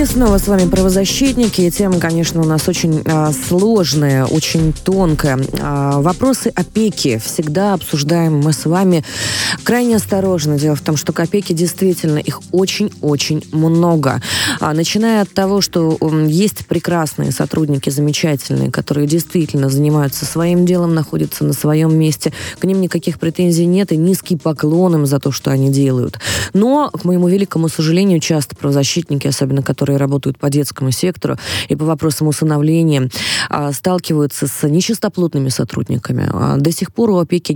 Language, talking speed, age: Russian, 145 wpm, 20-39